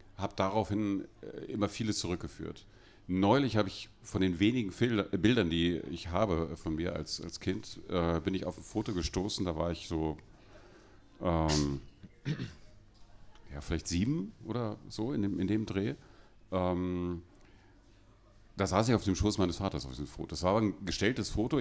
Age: 40-59